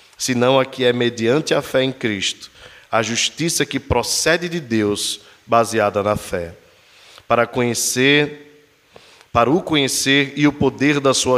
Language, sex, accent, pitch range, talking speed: Portuguese, male, Brazilian, 110-130 Hz, 140 wpm